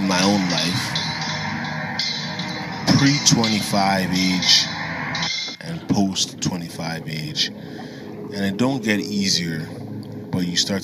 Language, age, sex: English, 20-39, male